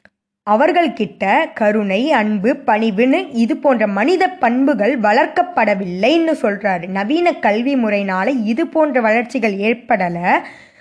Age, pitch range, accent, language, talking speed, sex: 20-39, 210-295 Hz, native, Tamil, 95 wpm, female